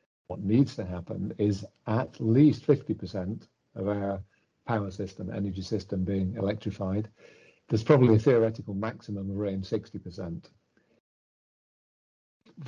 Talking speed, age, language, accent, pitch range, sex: 110 wpm, 50-69, English, British, 100-115 Hz, male